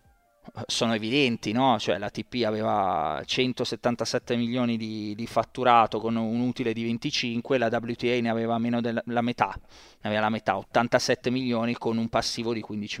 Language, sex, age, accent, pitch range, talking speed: Italian, male, 20-39, native, 110-125 Hz, 155 wpm